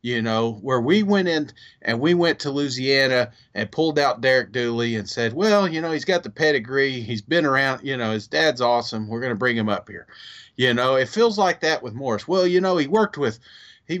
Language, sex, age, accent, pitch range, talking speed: English, male, 40-59, American, 120-170 Hz, 235 wpm